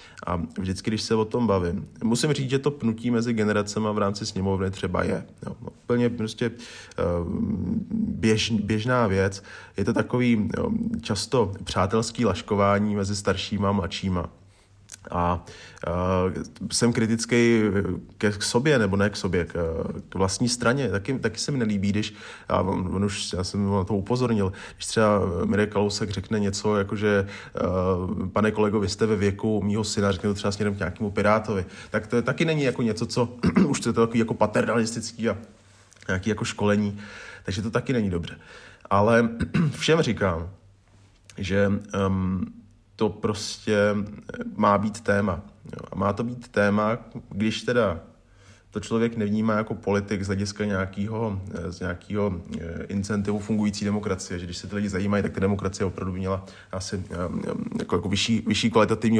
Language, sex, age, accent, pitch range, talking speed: Czech, male, 30-49, native, 95-115 Hz, 160 wpm